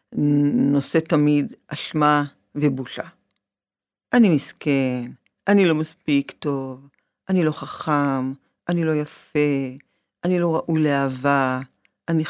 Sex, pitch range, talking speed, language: female, 145-225 Hz, 105 wpm, Hebrew